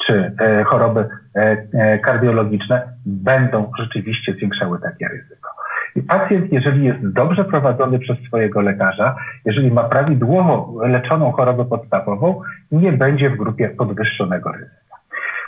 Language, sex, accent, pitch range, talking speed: Polish, male, native, 115-150 Hz, 110 wpm